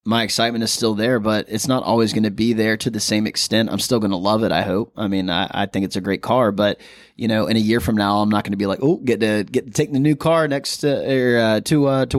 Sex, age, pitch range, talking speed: male, 20-39, 105-120 Hz, 310 wpm